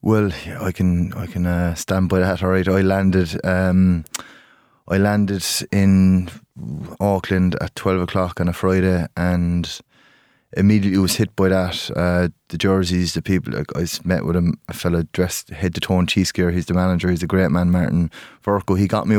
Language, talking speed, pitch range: English, 190 wpm, 85-95 Hz